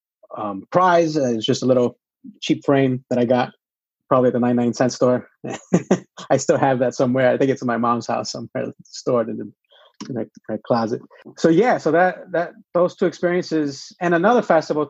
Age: 30-49